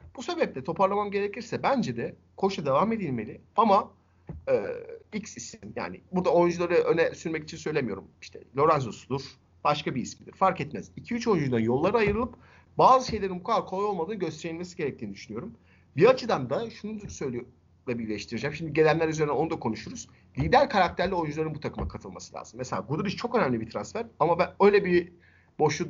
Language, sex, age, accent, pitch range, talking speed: Turkish, male, 50-69, native, 165-225 Hz, 160 wpm